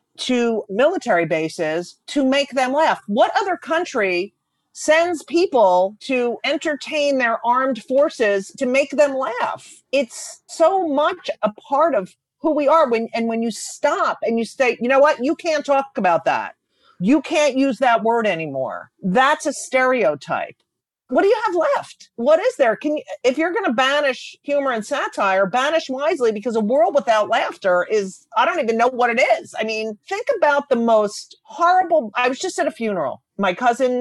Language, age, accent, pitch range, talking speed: English, 40-59, American, 200-290 Hz, 180 wpm